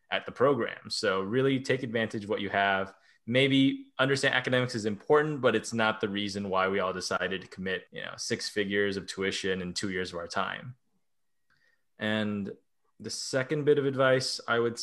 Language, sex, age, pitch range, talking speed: English, male, 20-39, 95-120 Hz, 190 wpm